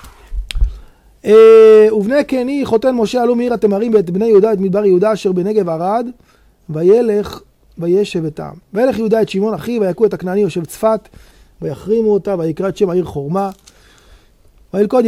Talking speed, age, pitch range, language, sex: 155 wpm, 30-49, 185-225 Hz, Hebrew, male